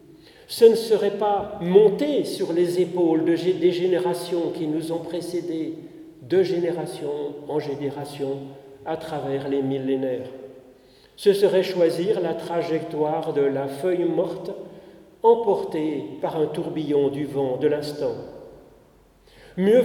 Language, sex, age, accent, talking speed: French, male, 40-59, French, 120 wpm